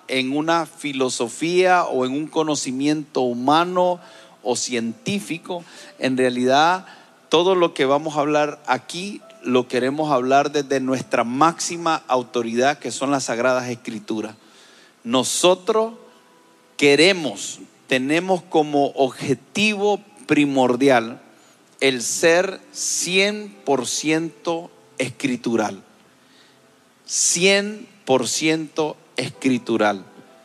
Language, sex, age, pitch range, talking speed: Spanish, male, 40-59, 125-170 Hz, 85 wpm